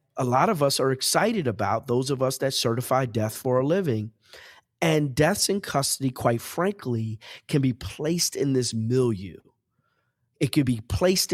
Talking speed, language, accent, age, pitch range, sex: 170 wpm, English, American, 30-49, 110-140 Hz, male